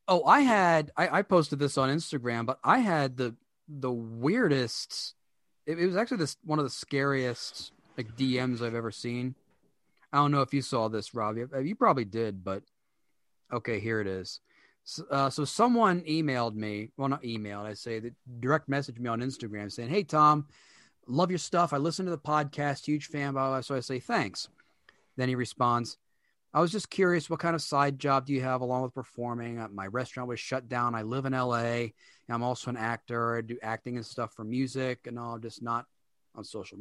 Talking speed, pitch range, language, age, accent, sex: 200 wpm, 115-150 Hz, English, 30-49, American, male